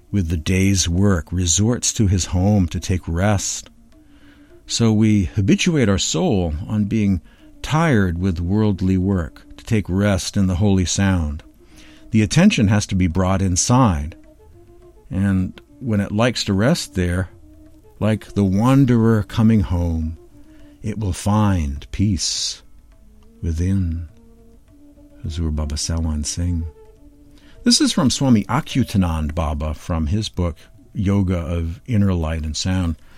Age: 60-79